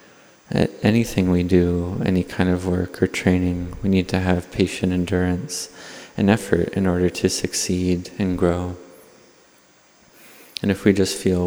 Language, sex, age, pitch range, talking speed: English, male, 30-49, 90-95 Hz, 145 wpm